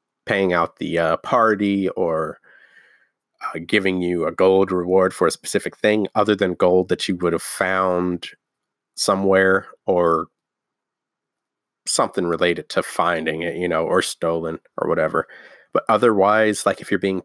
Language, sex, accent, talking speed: English, male, American, 150 wpm